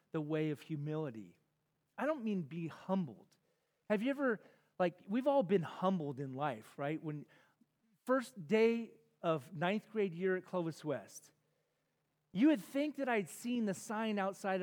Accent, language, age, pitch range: American, English, 30-49, 150-210 Hz